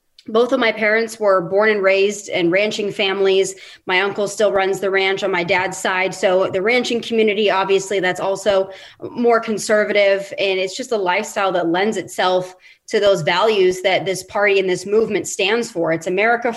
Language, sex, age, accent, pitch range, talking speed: English, female, 20-39, American, 195-230 Hz, 185 wpm